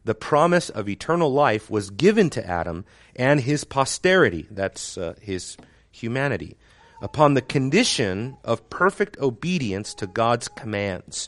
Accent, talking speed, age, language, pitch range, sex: American, 145 wpm, 40-59, English, 105-145 Hz, male